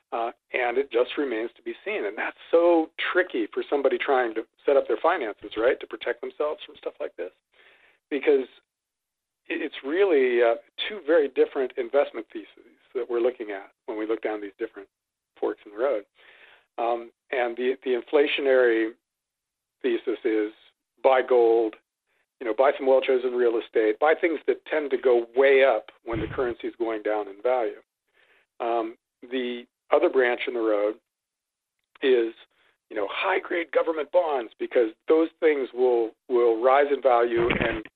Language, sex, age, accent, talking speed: English, male, 40-59, American, 170 wpm